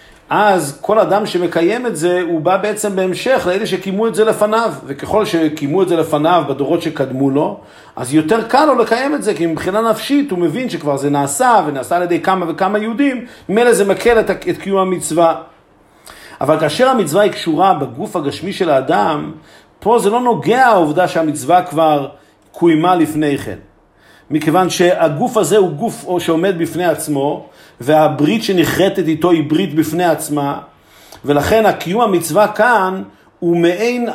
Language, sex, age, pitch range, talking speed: Hebrew, male, 50-69, 165-220 Hz, 160 wpm